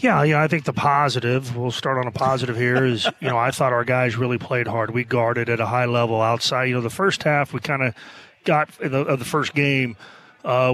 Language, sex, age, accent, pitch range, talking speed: English, male, 30-49, American, 125-140 Hz, 250 wpm